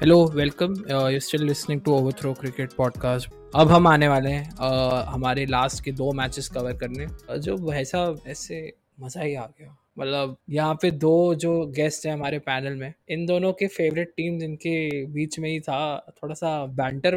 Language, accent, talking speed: Hindi, native, 180 wpm